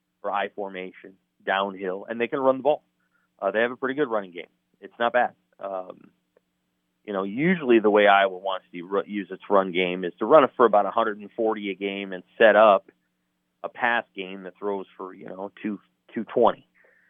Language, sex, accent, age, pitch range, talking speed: English, male, American, 30-49, 90-110 Hz, 200 wpm